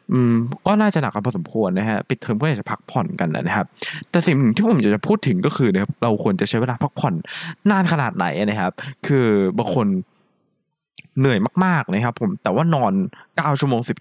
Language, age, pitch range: Thai, 20-39, 115-180 Hz